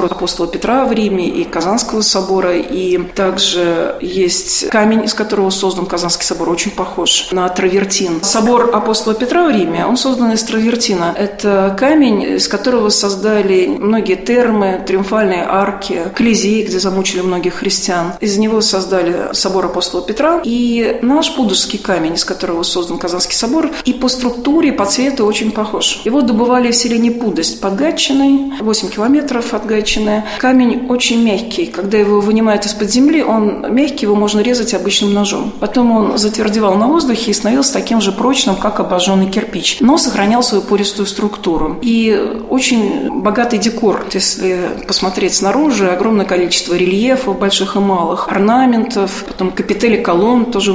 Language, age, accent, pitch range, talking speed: Russian, 40-59, native, 190-235 Hz, 150 wpm